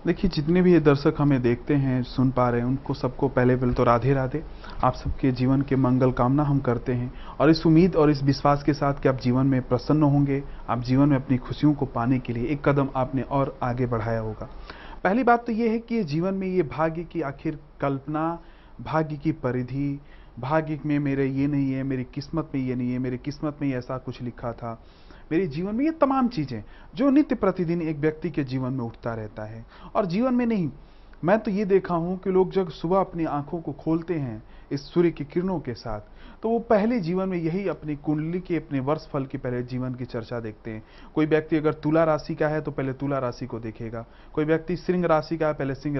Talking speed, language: 225 wpm, Hindi